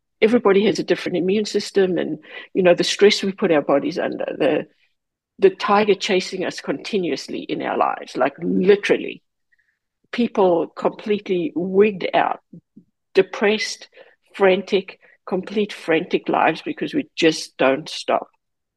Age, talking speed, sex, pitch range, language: 60-79, 130 wpm, female, 175-230 Hz, English